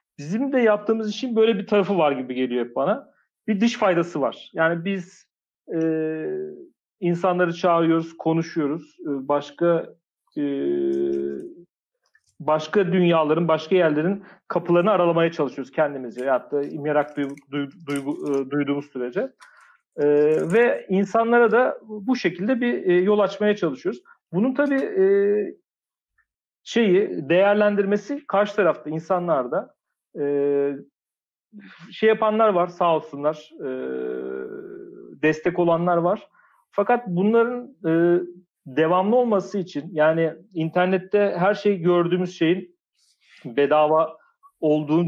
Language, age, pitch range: Turkish, 40-59, 155-205 Hz